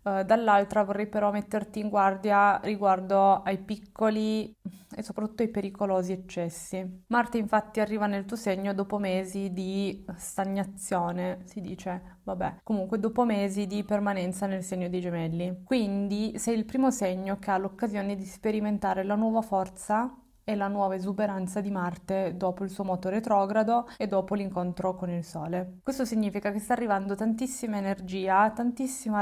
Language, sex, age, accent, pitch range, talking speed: Italian, female, 20-39, native, 190-215 Hz, 150 wpm